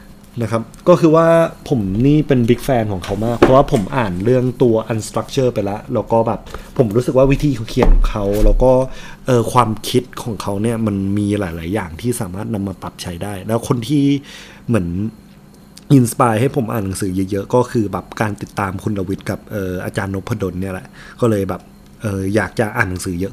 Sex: male